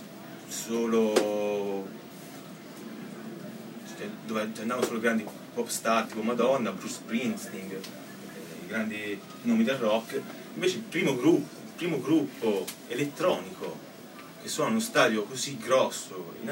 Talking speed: 110 wpm